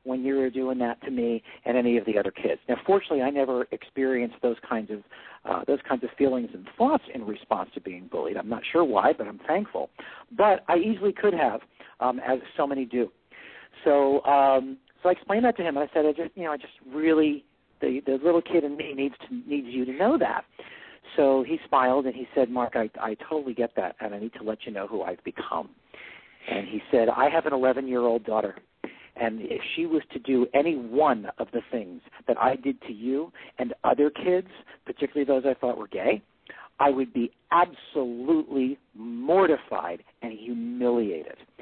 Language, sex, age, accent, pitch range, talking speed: English, male, 50-69, American, 120-165 Hz, 205 wpm